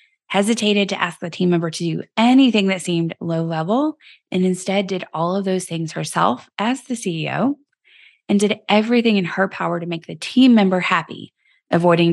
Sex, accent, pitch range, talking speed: female, American, 170-200 Hz, 185 wpm